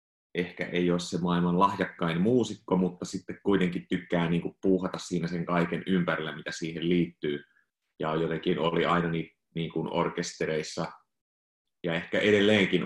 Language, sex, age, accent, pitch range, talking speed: Finnish, male, 30-49, native, 80-90 Hz, 145 wpm